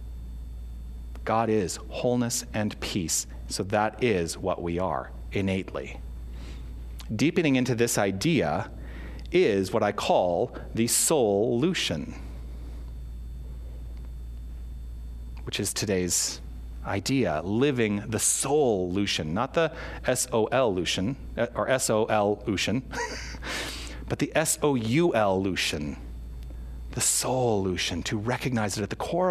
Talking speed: 105 wpm